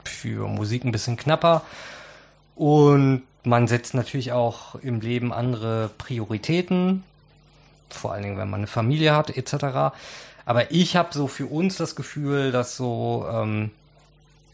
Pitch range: 120-150 Hz